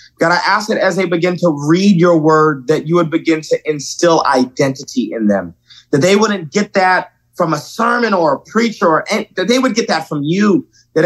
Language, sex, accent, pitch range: English, male, American, 140-180 Hz